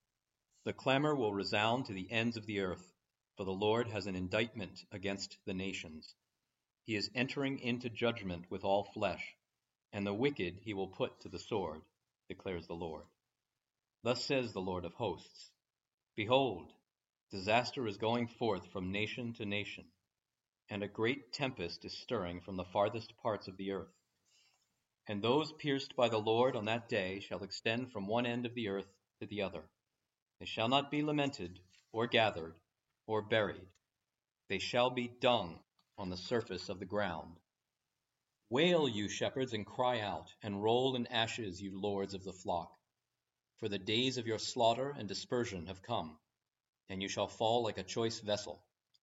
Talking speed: 170 wpm